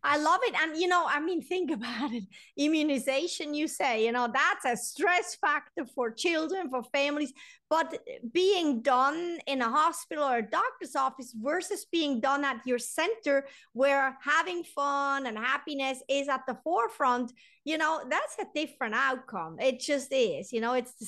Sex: female